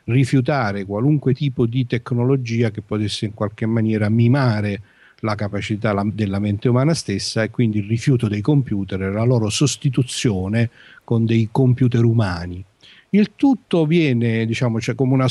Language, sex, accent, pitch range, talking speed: Italian, male, native, 105-130 Hz, 150 wpm